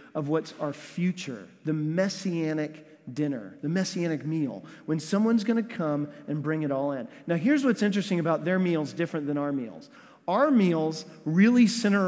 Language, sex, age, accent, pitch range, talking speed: English, male, 40-59, American, 155-220 Hz, 170 wpm